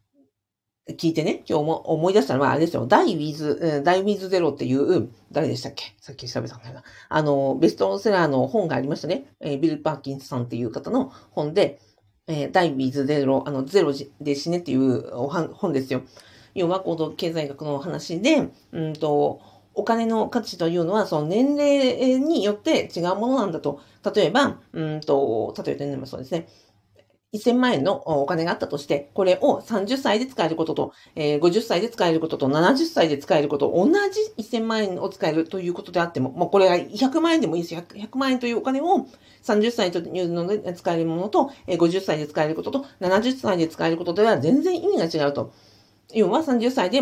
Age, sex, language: 50-69, female, Japanese